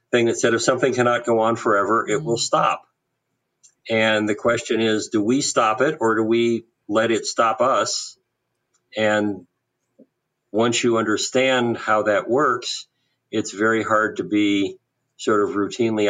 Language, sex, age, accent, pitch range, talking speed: English, male, 50-69, American, 105-125 Hz, 155 wpm